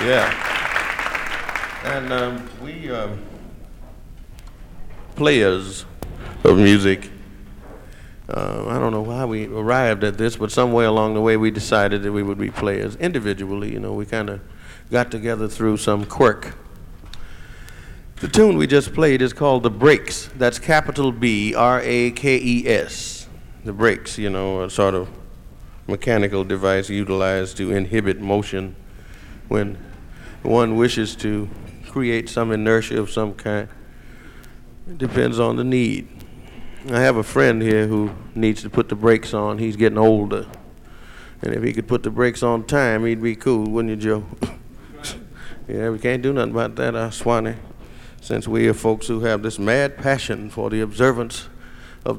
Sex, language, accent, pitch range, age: male, Chinese, American, 105-120 Hz, 50-69